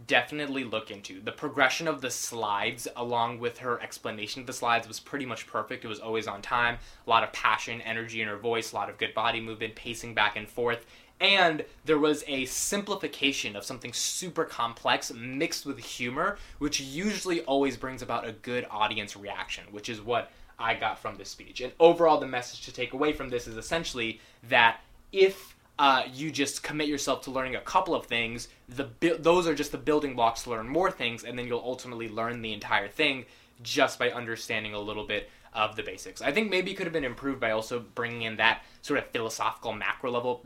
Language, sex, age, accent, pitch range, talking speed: English, male, 20-39, American, 115-140 Hz, 210 wpm